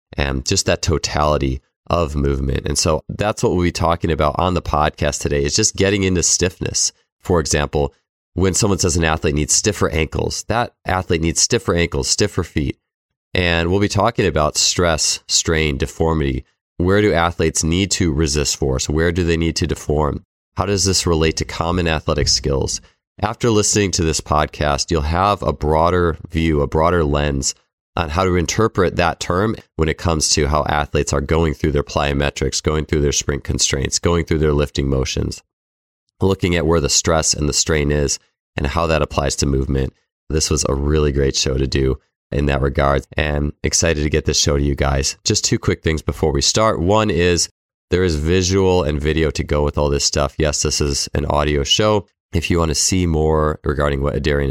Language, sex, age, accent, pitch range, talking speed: English, male, 30-49, American, 75-90 Hz, 195 wpm